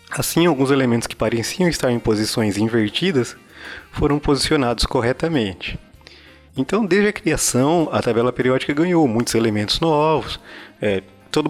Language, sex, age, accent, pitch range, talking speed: Portuguese, male, 20-39, Brazilian, 100-130 Hz, 125 wpm